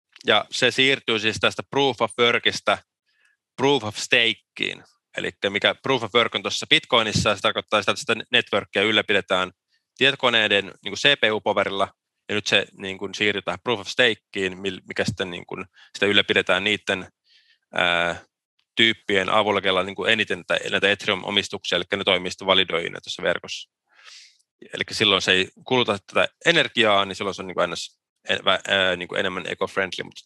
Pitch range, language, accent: 95-120 Hz, Finnish, native